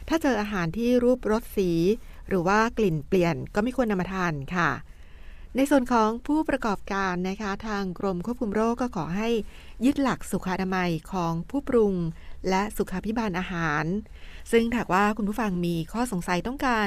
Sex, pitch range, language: female, 180-230 Hz, Thai